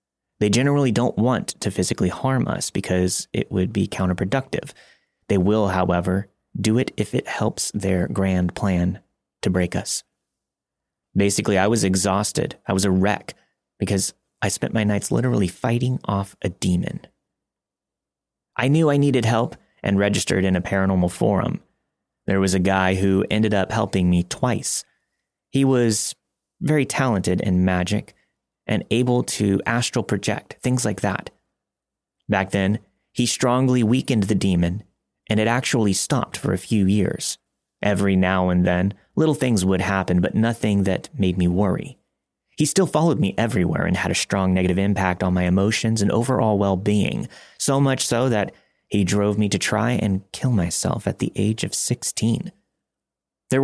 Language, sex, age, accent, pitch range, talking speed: English, male, 30-49, American, 95-115 Hz, 160 wpm